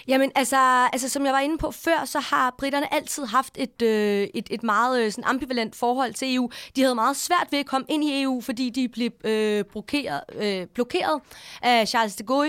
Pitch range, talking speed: 220-265 Hz, 215 wpm